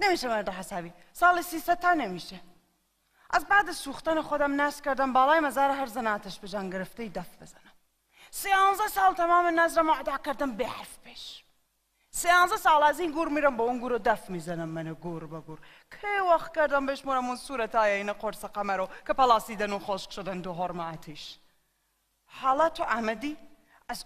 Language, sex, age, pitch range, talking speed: Persian, female, 30-49, 205-320 Hz, 160 wpm